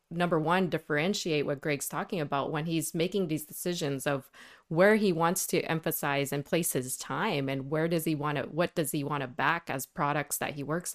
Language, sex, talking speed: English, female, 215 wpm